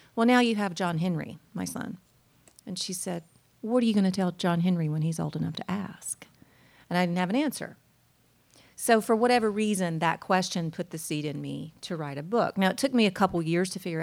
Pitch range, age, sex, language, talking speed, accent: 155-190 Hz, 40-59, female, English, 235 wpm, American